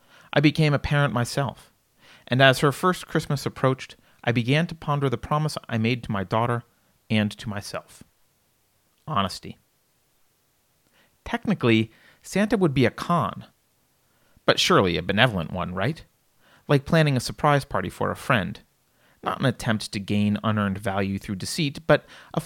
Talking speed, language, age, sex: 150 wpm, English, 30-49, male